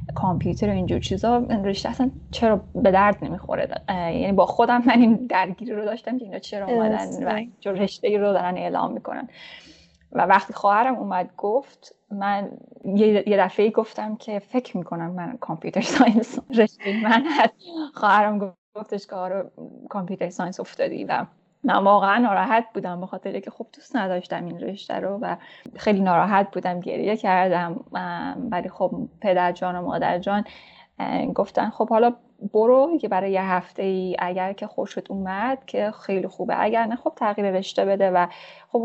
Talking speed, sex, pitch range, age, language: 160 wpm, female, 185-225 Hz, 10-29, Persian